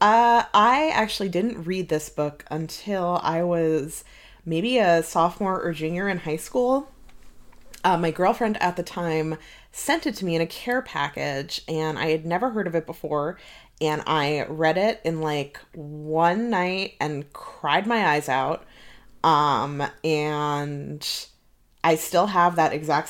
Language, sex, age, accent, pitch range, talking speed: English, female, 20-39, American, 155-190 Hz, 155 wpm